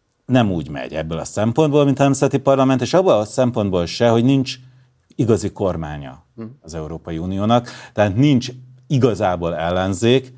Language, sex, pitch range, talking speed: Hungarian, male, 85-120 Hz, 150 wpm